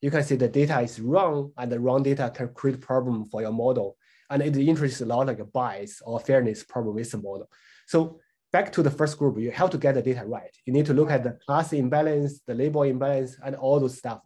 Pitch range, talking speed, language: 130-160 Hz, 250 wpm, English